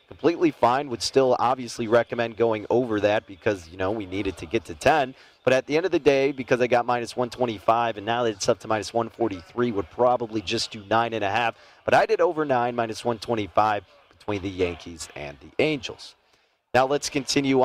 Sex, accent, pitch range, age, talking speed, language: male, American, 110-130 Hz, 30-49, 210 wpm, English